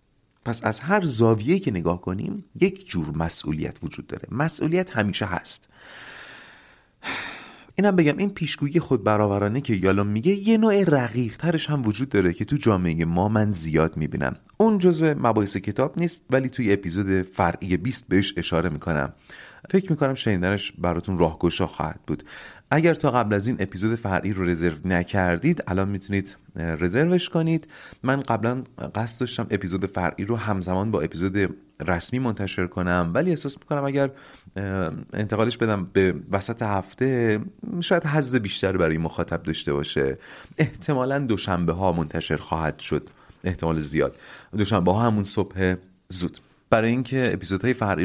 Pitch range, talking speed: 90-130 Hz, 145 wpm